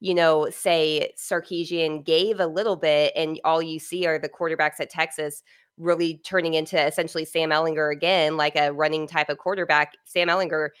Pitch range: 155-180 Hz